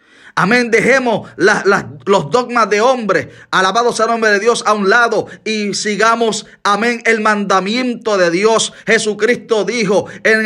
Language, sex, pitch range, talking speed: Spanish, male, 190-225 Hz, 140 wpm